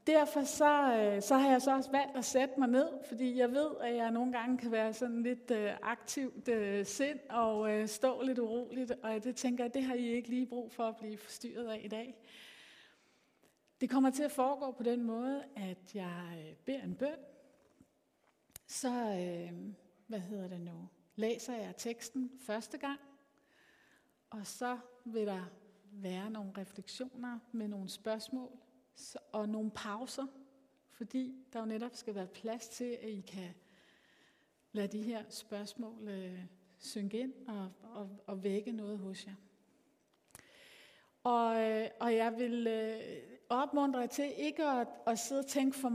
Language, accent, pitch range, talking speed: Danish, native, 215-260 Hz, 160 wpm